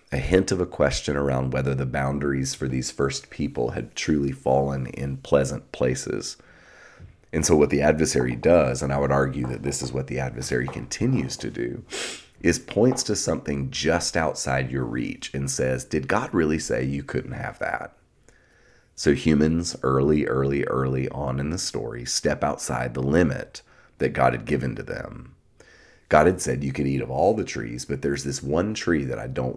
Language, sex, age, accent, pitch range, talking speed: English, male, 30-49, American, 65-75 Hz, 190 wpm